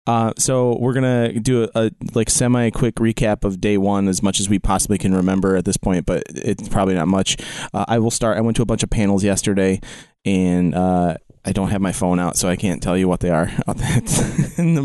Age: 20-39